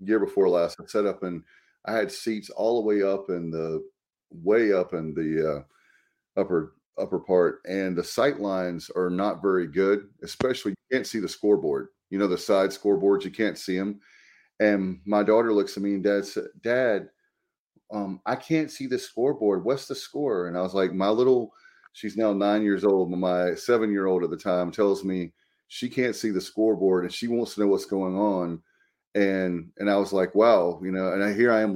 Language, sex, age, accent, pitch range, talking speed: English, male, 30-49, American, 95-105 Hz, 210 wpm